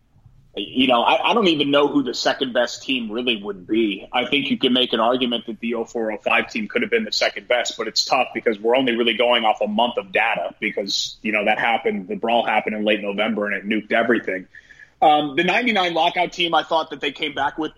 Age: 30-49